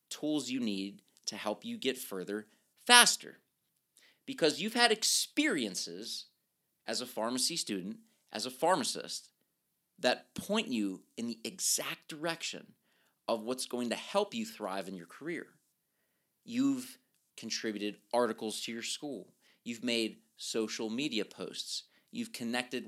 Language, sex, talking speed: English, male, 130 wpm